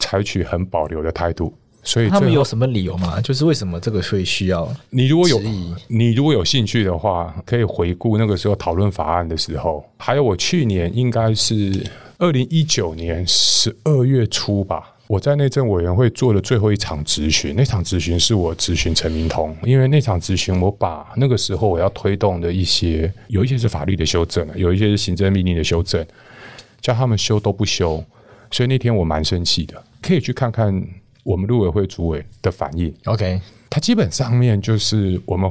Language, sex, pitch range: Chinese, male, 90-120 Hz